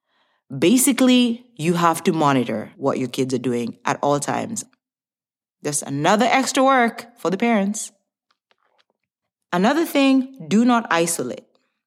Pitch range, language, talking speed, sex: 160-245 Hz, English, 125 wpm, female